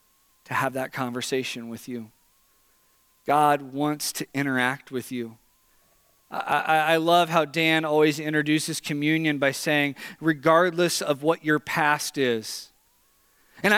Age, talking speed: 40-59, 125 wpm